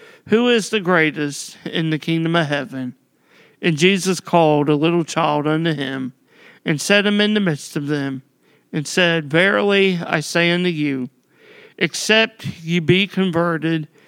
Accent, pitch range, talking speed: American, 150-180 Hz, 155 wpm